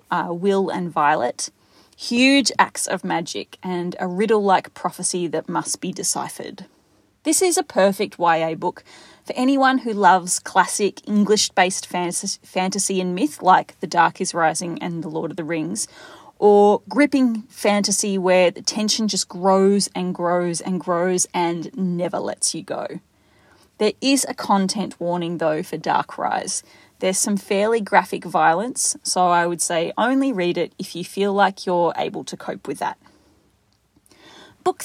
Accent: Australian